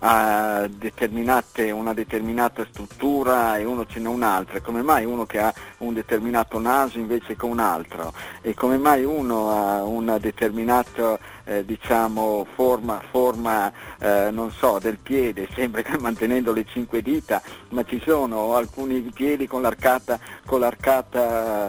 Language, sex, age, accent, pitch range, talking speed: Italian, male, 50-69, native, 110-125 Hz, 140 wpm